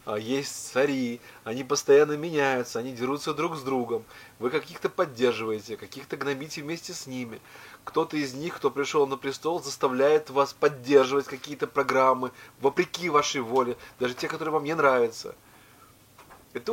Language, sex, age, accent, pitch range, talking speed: Russian, male, 20-39, native, 115-140 Hz, 145 wpm